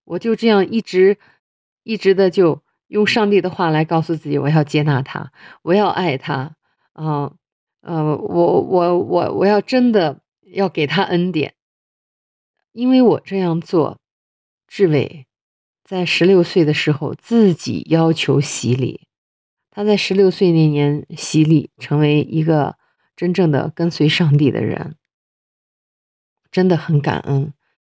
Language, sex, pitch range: English, female, 150-180 Hz